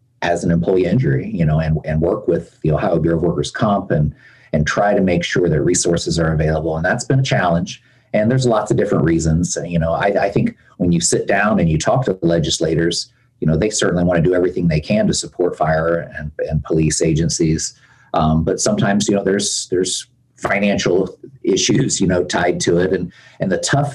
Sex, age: male, 40-59